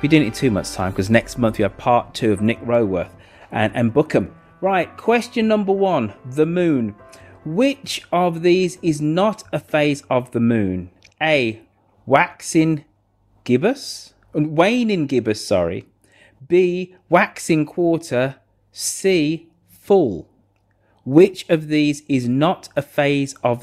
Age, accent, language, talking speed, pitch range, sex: 30-49, British, English, 140 wpm, 110-170 Hz, male